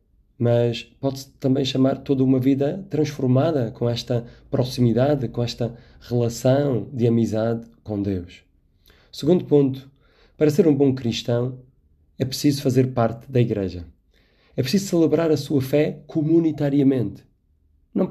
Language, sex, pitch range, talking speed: Portuguese, male, 115-145 Hz, 130 wpm